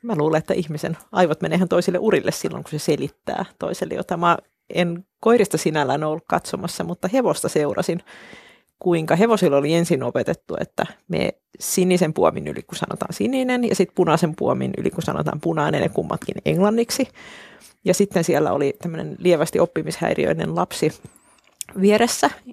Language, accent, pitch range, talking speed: Finnish, native, 170-210 Hz, 145 wpm